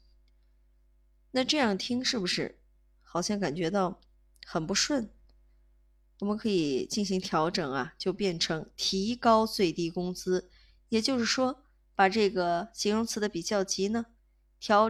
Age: 20-39